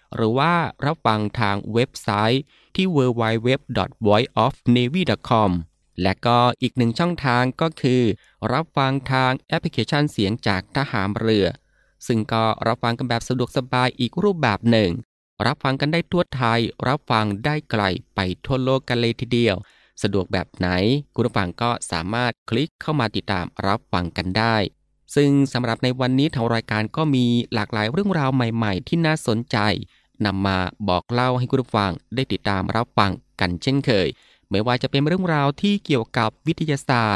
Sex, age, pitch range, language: male, 20-39, 105-135 Hz, Thai